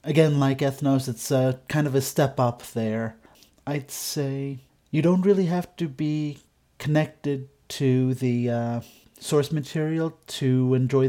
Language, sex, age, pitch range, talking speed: English, male, 30-49, 125-145 Hz, 140 wpm